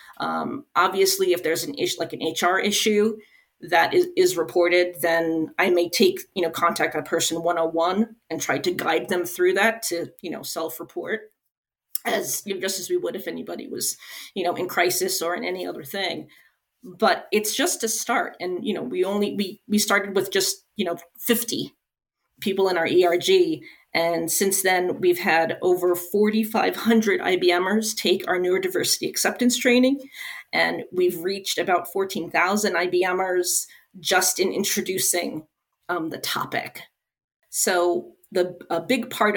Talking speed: 160 wpm